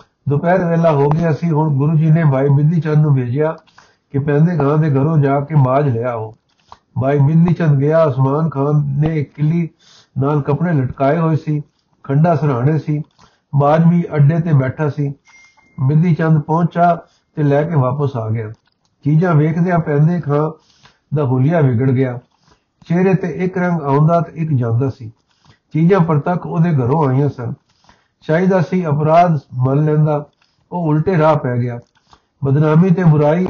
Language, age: Punjabi, 60-79